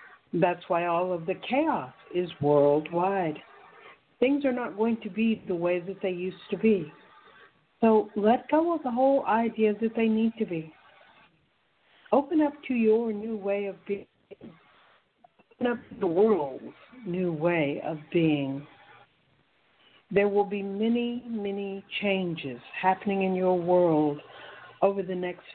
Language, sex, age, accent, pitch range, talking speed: English, female, 60-79, American, 175-225 Hz, 150 wpm